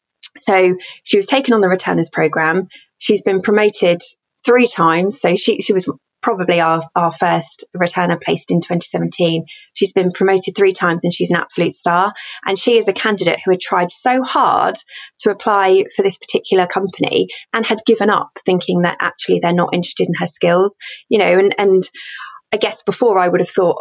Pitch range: 175-215 Hz